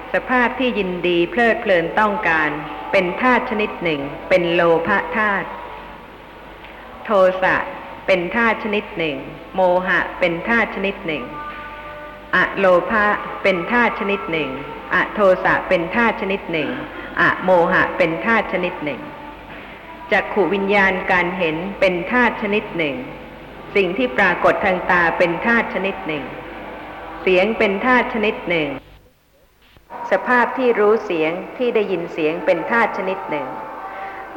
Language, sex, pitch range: Thai, female, 185-245 Hz